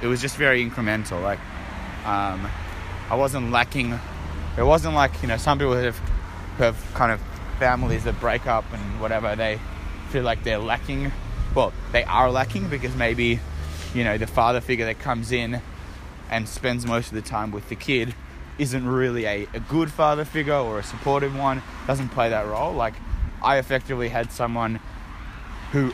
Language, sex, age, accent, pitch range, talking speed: English, male, 20-39, Australian, 90-120 Hz, 175 wpm